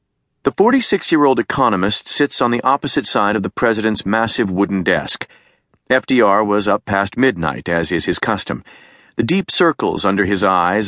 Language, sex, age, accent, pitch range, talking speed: English, male, 40-59, American, 100-125 Hz, 160 wpm